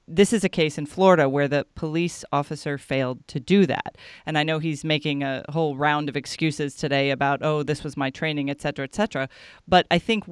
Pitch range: 145-175 Hz